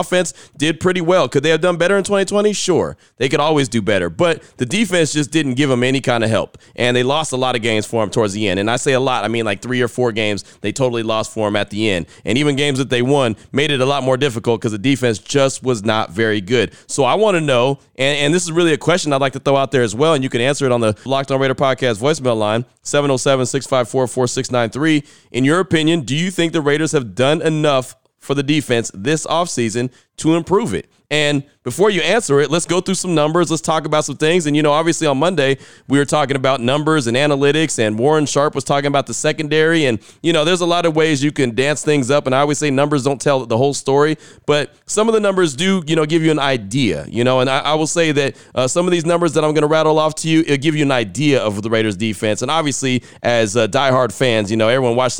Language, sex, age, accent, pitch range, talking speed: English, male, 30-49, American, 125-155 Hz, 265 wpm